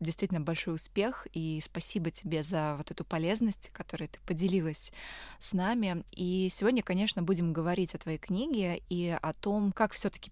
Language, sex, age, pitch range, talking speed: Russian, female, 20-39, 165-200 Hz, 165 wpm